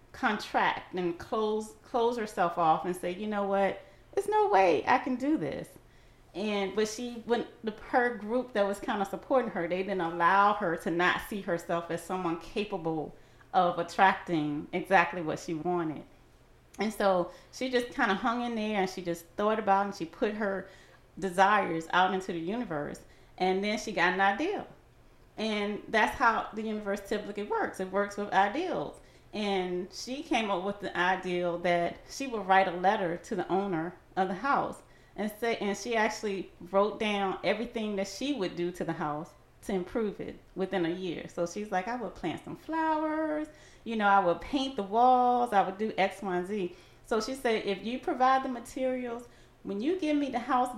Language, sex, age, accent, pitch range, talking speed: English, female, 30-49, American, 180-230 Hz, 195 wpm